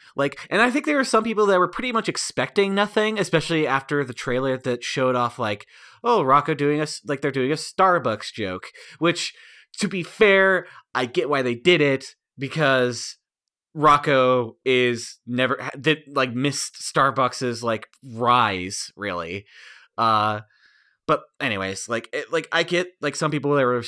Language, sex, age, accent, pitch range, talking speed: English, male, 20-39, American, 115-160 Hz, 165 wpm